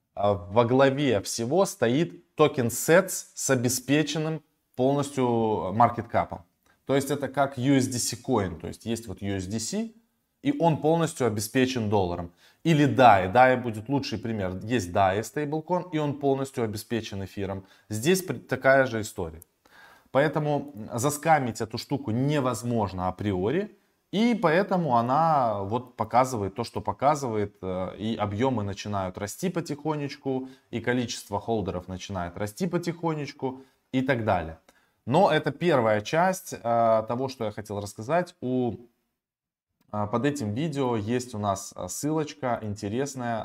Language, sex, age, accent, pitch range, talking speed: Russian, male, 20-39, native, 105-145 Hz, 125 wpm